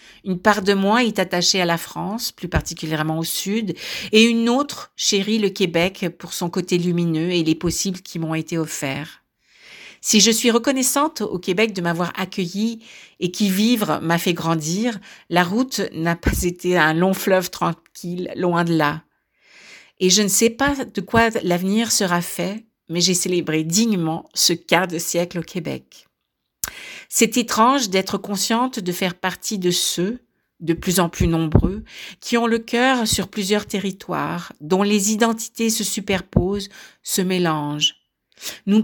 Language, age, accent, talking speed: French, 50-69, French, 165 wpm